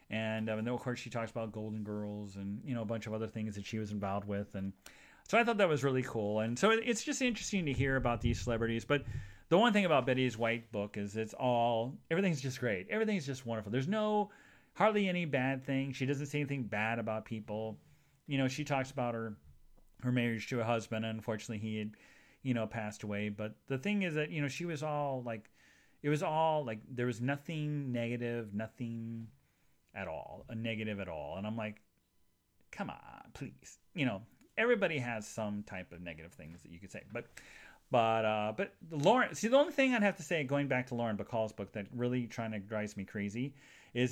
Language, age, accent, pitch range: English, 40-59, American, 110-145 Hz